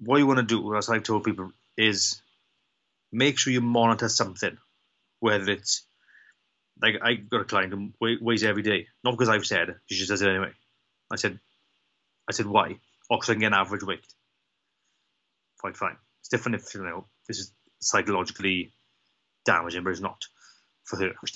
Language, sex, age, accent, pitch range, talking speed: English, male, 30-49, British, 100-125 Hz, 170 wpm